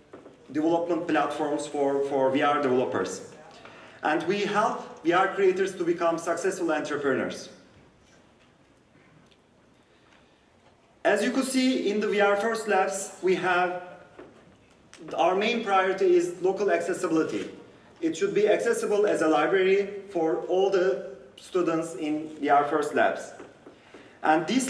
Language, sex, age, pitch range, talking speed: English, male, 30-49, 155-200 Hz, 120 wpm